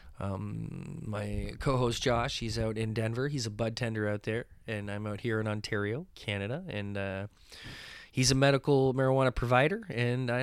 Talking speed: 175 wpm